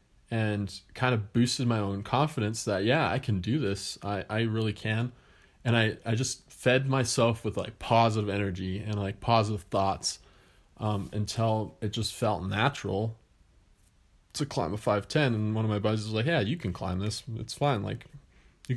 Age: 20-39